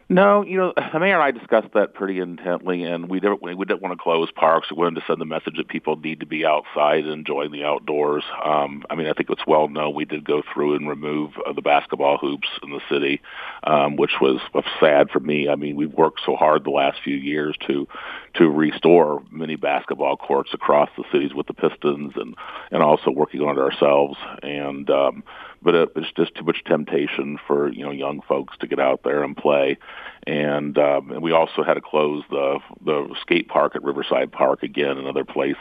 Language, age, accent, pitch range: English, 50-69, American, 75-85 Hz